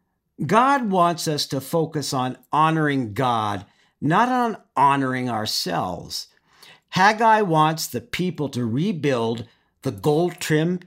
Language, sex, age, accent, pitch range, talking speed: English, male, 50-69, American, 120-175 Hz, 110 wpm